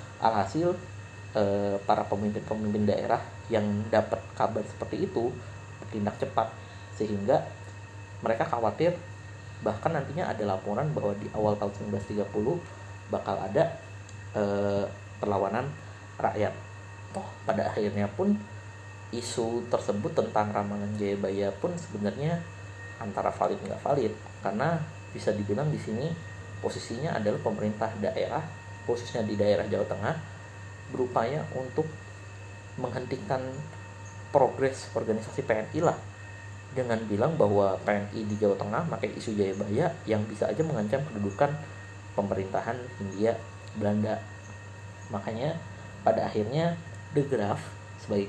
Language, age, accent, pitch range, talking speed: Indonesian, 30-49, native, 100-110 Hz, 110 wpm